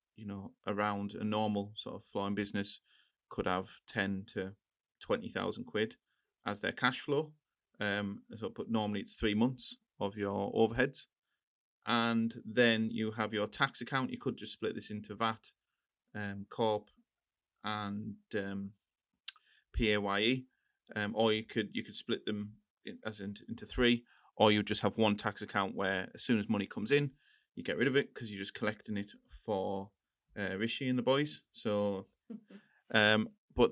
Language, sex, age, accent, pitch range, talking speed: English, male, 30-49, British, 105-125 Hz, 170 wpm